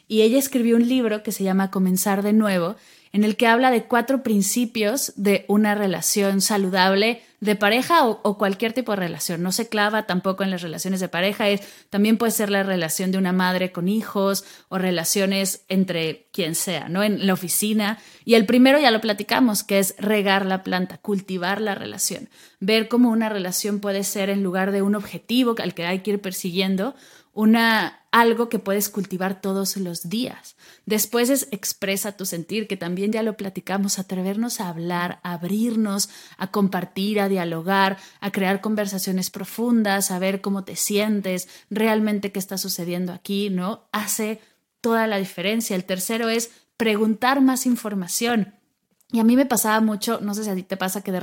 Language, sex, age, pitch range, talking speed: Spanish, female, 20-39, 190-225 Hz, 185 wpm